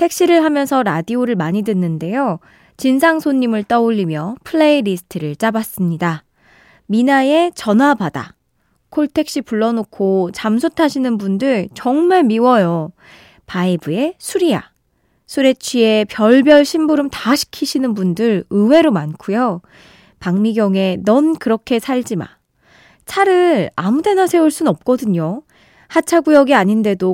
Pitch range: 195-295 Hz